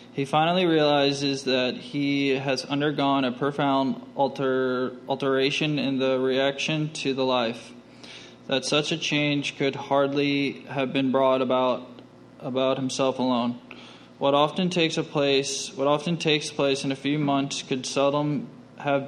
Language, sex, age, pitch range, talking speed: English, male, 20-39, 130-140 Hz, 145 wpm